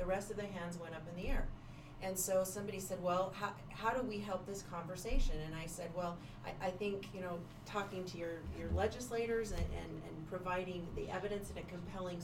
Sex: female